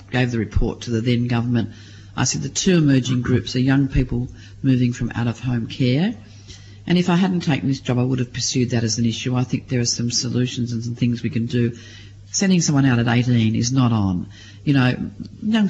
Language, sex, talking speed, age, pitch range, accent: English, female, 220 wpm, 40-59, 110-140 Hz, Australian